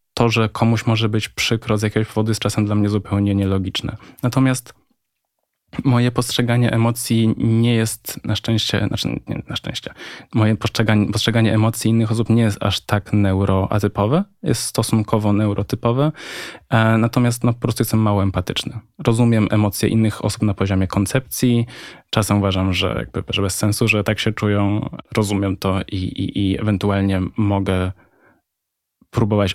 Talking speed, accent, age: 150 wpm, native, 10-29